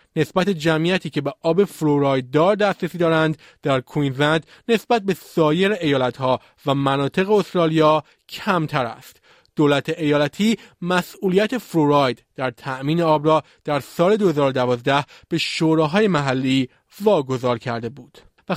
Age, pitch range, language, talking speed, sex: 30-49, 140-180 Hz, Persian, 125 wpm, male